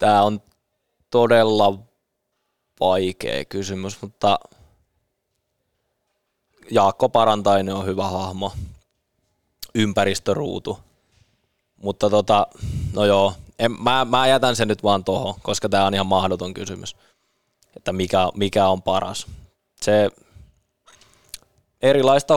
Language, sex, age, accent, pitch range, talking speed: Finnish, male, 20-39, native, 95-115 Hz, 100 wpm